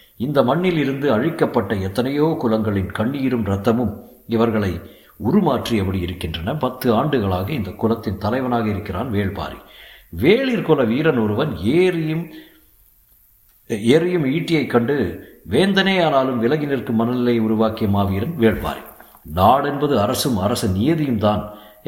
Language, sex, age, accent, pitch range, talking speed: Tamil, male, 60-79, native, 100-135 Hz, 100 wpm